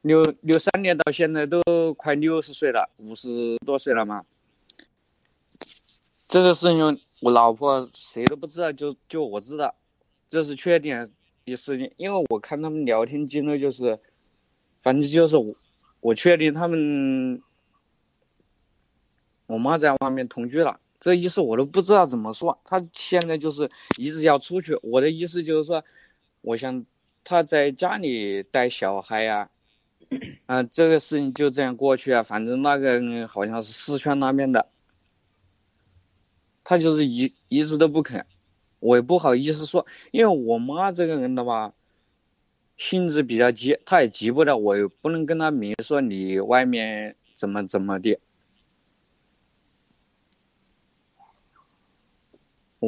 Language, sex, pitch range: Chinese, male, 115-160 Hz